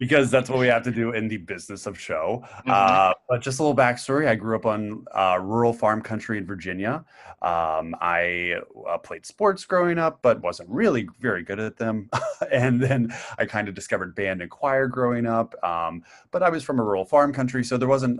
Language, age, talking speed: English, 30-49, 210 wpm